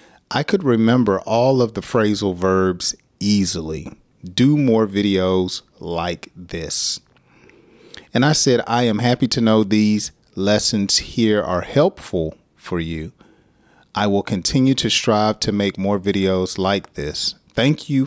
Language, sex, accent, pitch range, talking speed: English, male, American, 95-110 Hz, 140 wpm